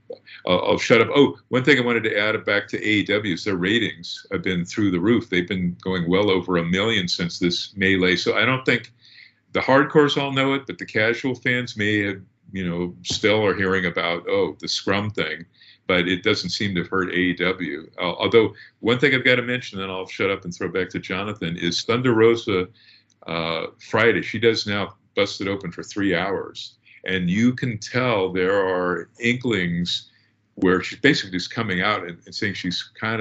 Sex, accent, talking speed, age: male, American, 200 wpm, 50-69